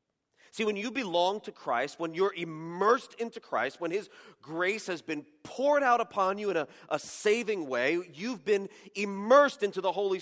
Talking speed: 180 wpm